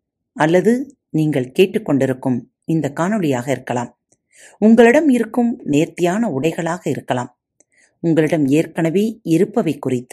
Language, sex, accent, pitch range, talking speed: Tamil, female, native, 135-215 Hz, 90 wpm